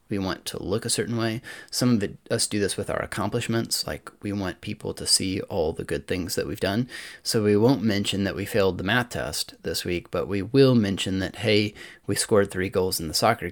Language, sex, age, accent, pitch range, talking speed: English, male, 20-39, American, 90-115 Hz, 235 wpm